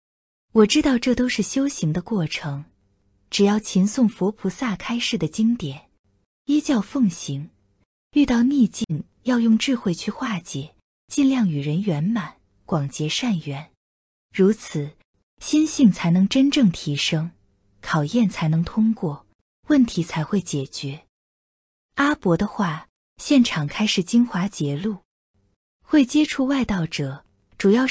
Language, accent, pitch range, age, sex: Chinese, native, 150-245 Hz, 20-39, female